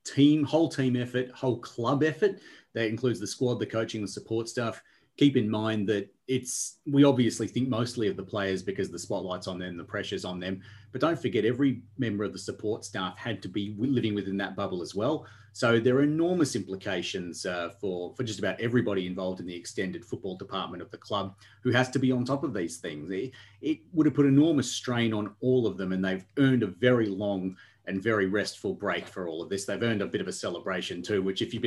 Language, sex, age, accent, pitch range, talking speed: English, male, 30-49, Australian, 95-130 Hz, 225 wpm